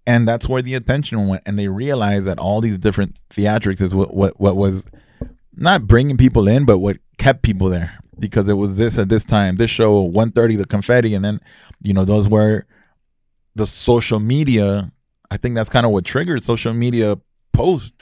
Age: 20-39